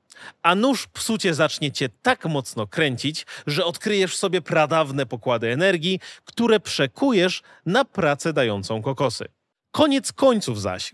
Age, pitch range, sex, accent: 30-49, 140-200 Hz, male, native